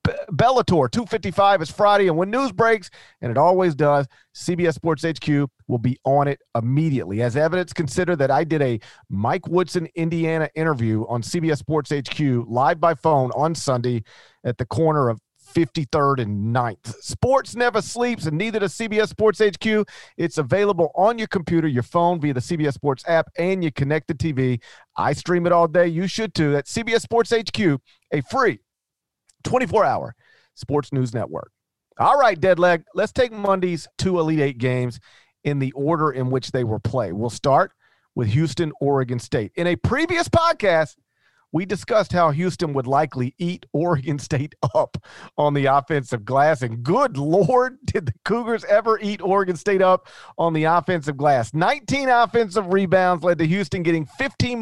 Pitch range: 140-190 Hz